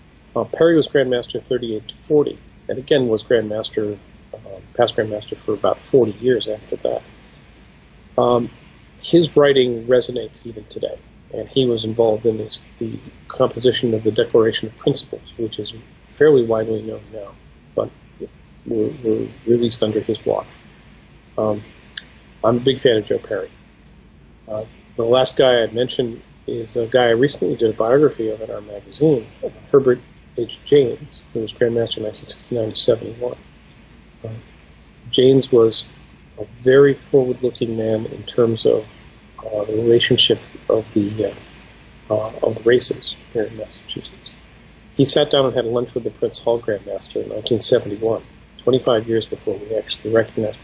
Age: 40-59